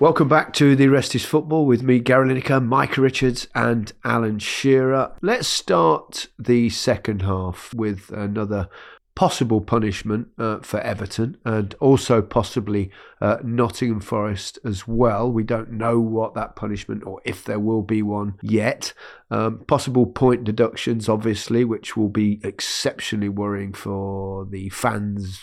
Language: English